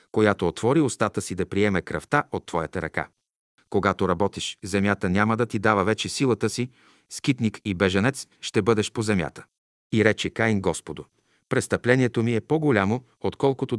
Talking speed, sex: 155 wpm, male